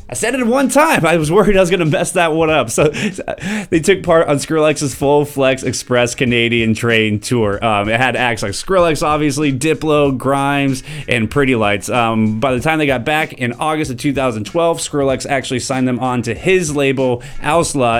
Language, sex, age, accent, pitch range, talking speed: English, male, 20-39, American, 115-145 Hz, 200 wpm